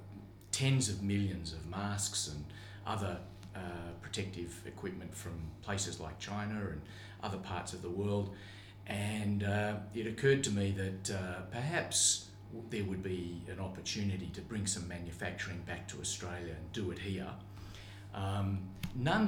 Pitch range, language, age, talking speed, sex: 90-105 Hz, English, 40-59, 145 wpm, male